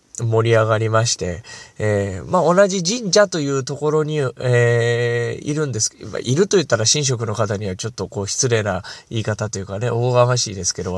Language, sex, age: Japanese, male, 20-39